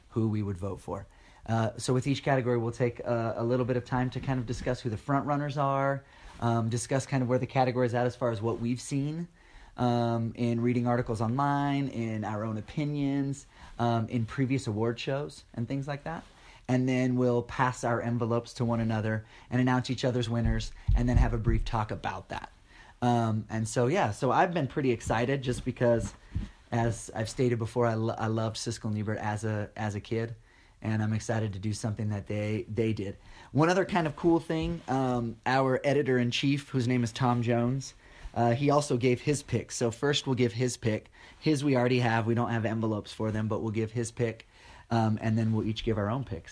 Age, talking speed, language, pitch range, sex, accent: 30-49, 220 wpm, English, 110-130 Hz, male, American